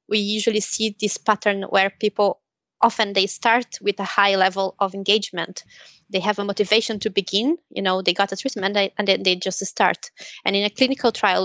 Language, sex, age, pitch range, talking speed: English, female, 20-39, 190-225 Hz, 205 wpm